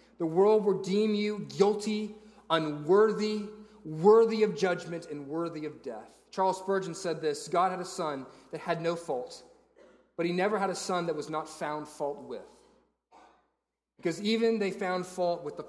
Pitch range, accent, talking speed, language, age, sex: 160-220 Hz, American, 170 wpm, English, 30-49, male